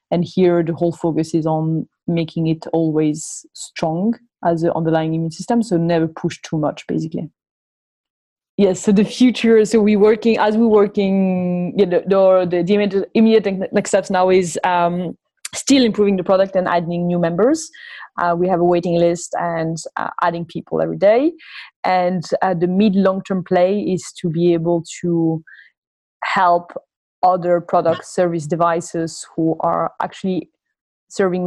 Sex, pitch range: female, 165-195 Hz